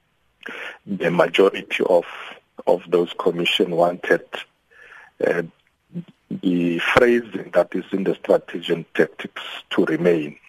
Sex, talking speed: male, 110 wpm